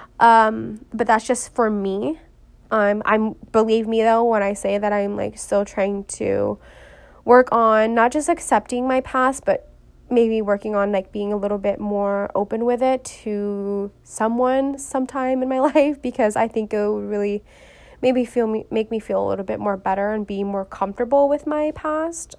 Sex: female